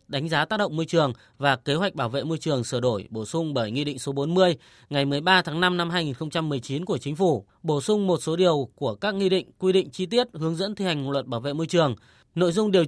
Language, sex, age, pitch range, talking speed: Vietnamese, female, 20-39, 140-185 Hz, 260 wpm